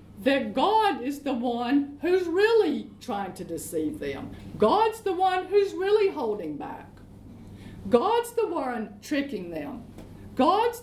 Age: 50-69